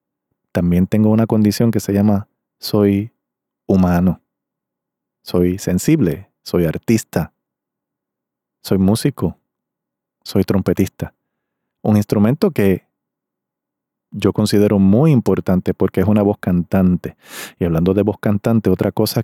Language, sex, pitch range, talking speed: Spanish, male, 95-115 Hz, 110 wpm